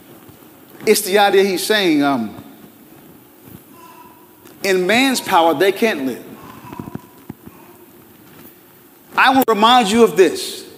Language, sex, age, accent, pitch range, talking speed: English, male, 40-59, American, 160-265 Hz, 100 wpm